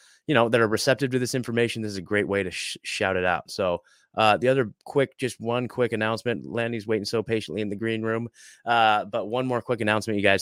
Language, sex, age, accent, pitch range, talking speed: English, male, 30-49, American, 105-135 Hz, 250 wpm